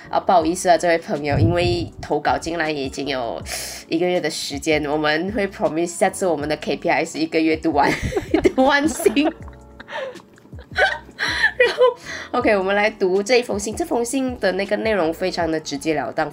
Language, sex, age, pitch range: Chinese, female, 20-39, 160-235 Hz